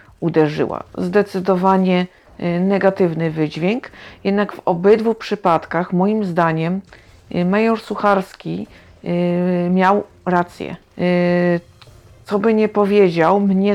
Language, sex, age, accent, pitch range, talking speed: Polish, female, 50-69, native, 175-215 Hz, 85 wpm